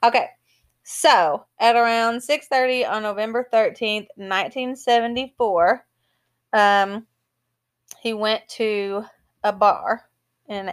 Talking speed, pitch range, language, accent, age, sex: 90 wpm, 190-225 Hz, English, American, 20-39, female